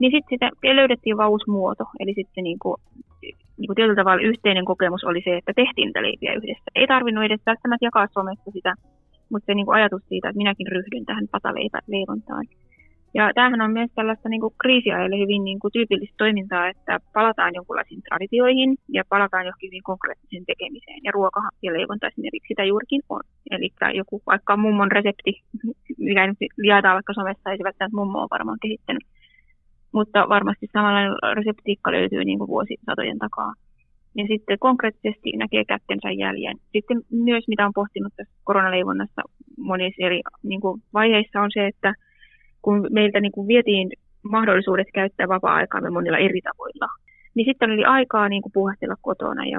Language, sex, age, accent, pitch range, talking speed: Finnish, female, 20-39, native, 185-225 Hz, 155 wpm